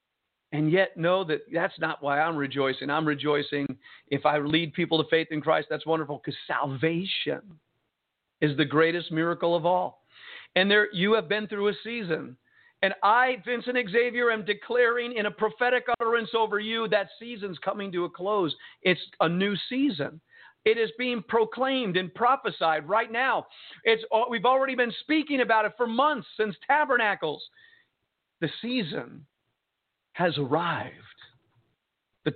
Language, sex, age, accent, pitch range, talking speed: English, male, 50-69, American, 165-245 Hz, 155 wpm